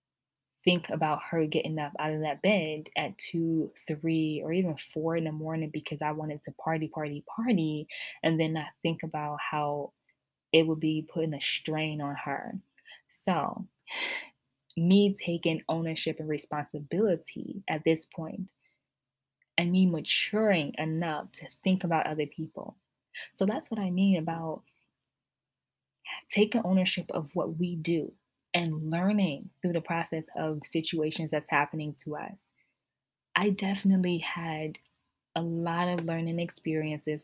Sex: female